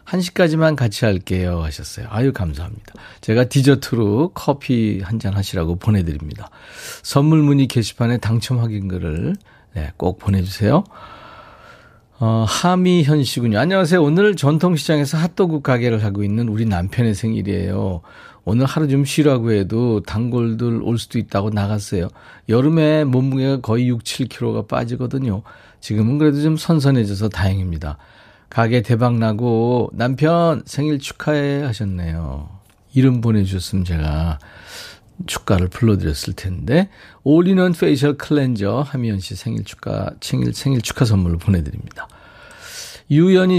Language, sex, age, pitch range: Korean, male, 40-59, 100-150 Hz